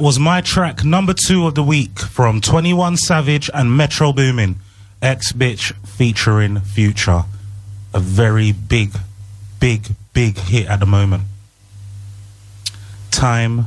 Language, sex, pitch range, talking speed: English, male, 100-120 Hz, 125 wpm